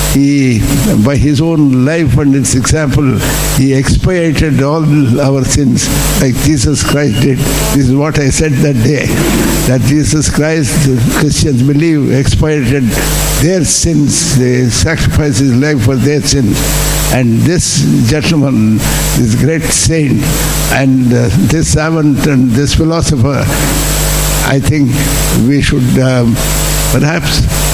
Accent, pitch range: native, 130-150 Hz